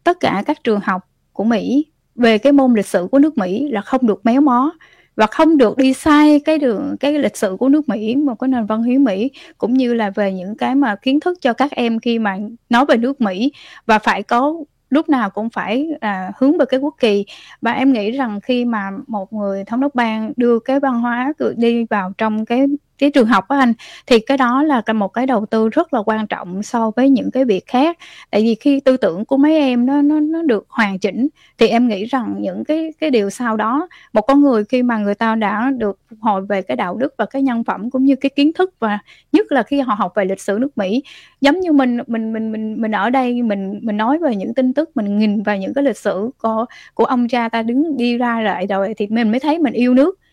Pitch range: 220-275 Hz